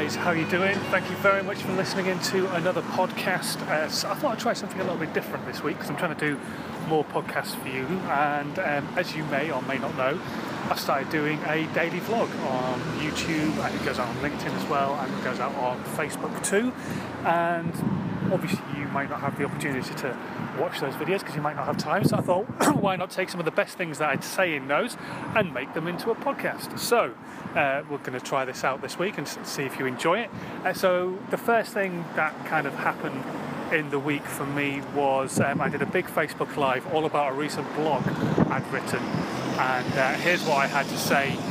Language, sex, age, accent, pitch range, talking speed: English, male, 30-49, British, 140-185 Hz, 230 wpm